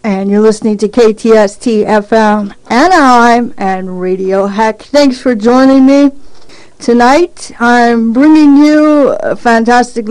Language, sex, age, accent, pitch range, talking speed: English, female, 40-59, American, 205-255 Hz, 115 wpm